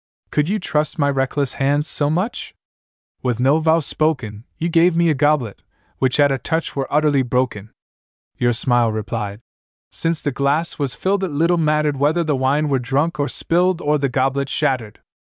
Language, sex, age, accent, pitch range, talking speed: English, male, 20-39, American, 105-140 Hz, 180 wpm